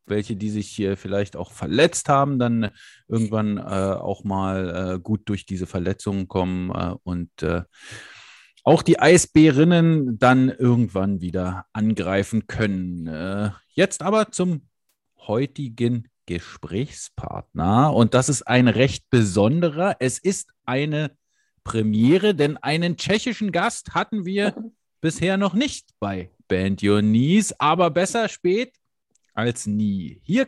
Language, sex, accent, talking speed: English, male, German, 130 wpm